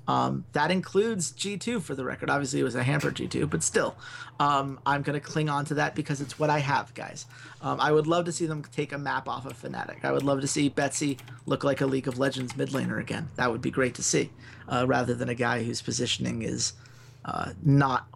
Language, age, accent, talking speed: English, 30-49, American, 240 wpm